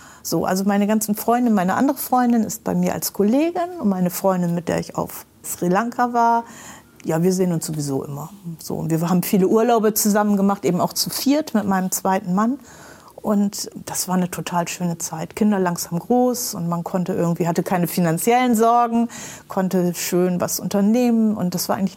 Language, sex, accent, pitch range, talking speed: German, female, German, 170-210 Hz, 190 wpm